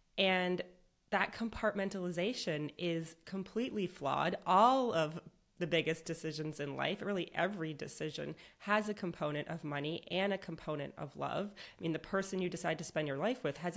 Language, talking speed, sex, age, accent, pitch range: English, 165 wpm, female, 30-49, American, 160-195 Hz